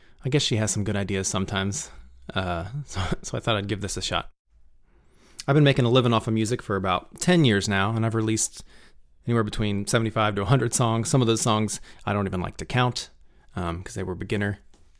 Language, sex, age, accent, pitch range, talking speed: English, male, 30-49, American, 95-115 Hz, 220 wpm